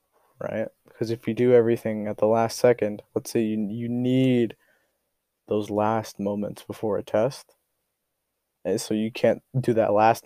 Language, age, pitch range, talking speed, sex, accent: English, 20-39, 105-120 Hz, 165 wpm, male, American